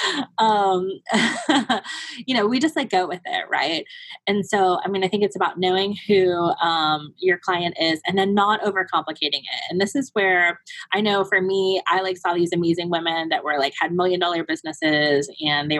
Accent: American